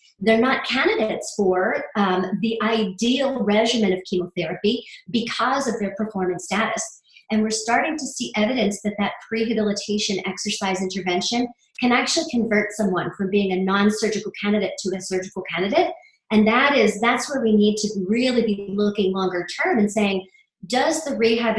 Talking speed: 160 wpm